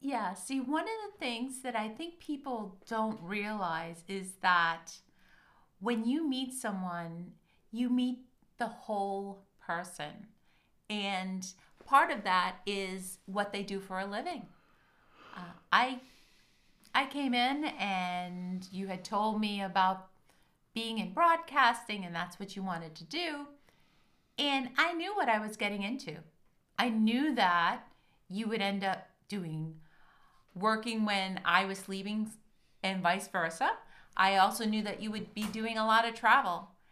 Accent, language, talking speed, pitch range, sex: American, English, 150 wpm, 190-245 Hz, female